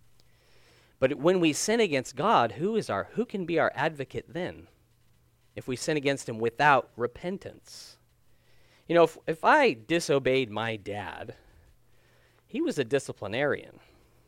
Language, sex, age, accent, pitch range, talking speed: English, male, 40-59, American, 120-180 Hz, 145 wpm